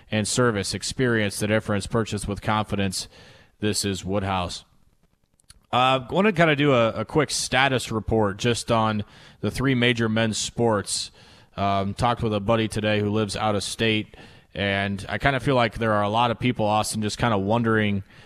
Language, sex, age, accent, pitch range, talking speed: English, male, 30-49, American, 105-130 Hz, 185 wpm